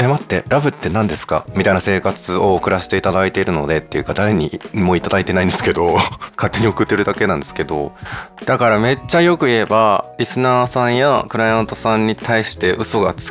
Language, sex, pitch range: Japanese, male, 95-140 Hz